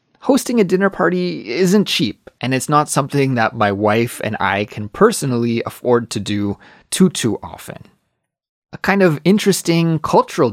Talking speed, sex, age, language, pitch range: 160 wpm, male, 20-39, English, 110-165 Hz